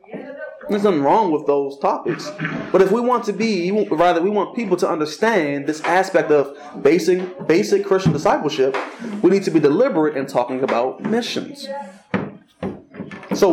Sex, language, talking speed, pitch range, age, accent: male, English, 155 wpm, 150-210 Hz, 20-39, American